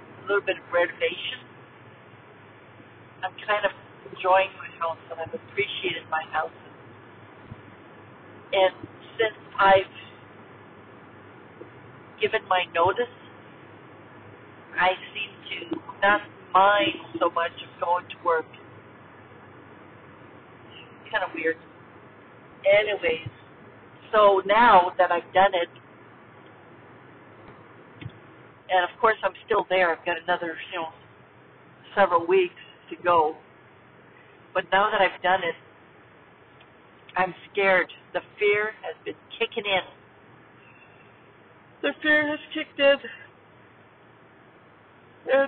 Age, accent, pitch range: 60-79, American, 170-215 Hz